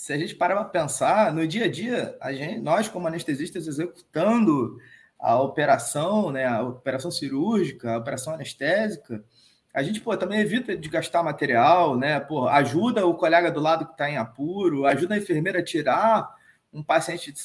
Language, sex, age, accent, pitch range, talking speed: Portuguese, male, 20-39, Brazilian, 165-235 Hz, 180 wpm